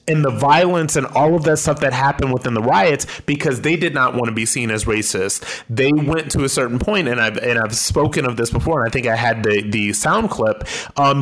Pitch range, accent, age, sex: 120-155 Hz, American, 30-49, male